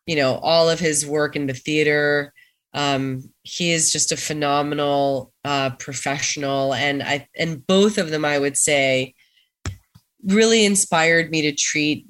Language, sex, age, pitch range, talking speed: English, female, 20-39, 145-185 Hz, 155 wpm